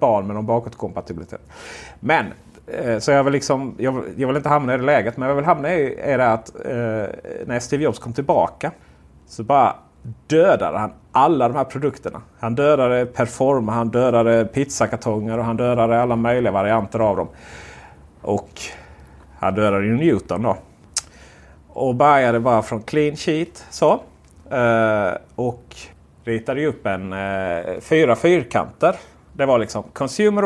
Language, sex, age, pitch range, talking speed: Swedish, male, 30-49, 95-135 Hz, 160 wpm